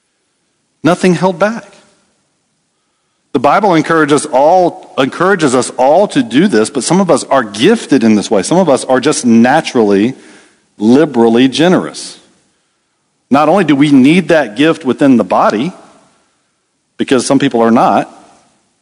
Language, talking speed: English, 145 wpm